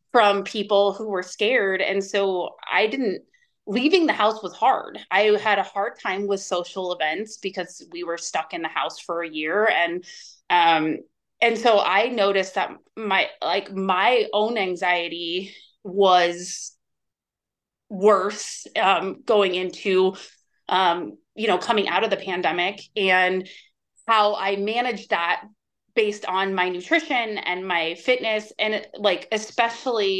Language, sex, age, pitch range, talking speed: English, female, 20-39, 185-215 Hz, 145 wpm